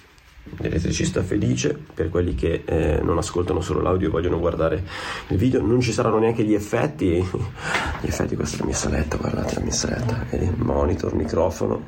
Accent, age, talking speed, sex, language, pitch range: native, 30-49, 155 wpm, male, Italian, 85-115 Hz